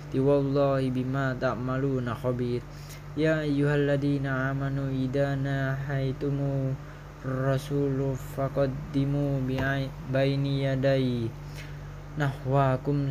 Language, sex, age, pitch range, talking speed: Indonesian, male, 20-39, 135-145 Hz, 65 wpm